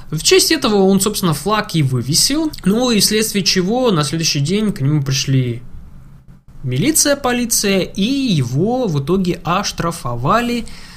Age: 20-39